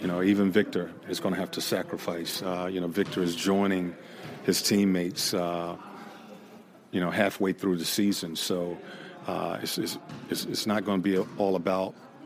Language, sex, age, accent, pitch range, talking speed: English, male, 40-59, American, 90-100 Hz, 175 wpm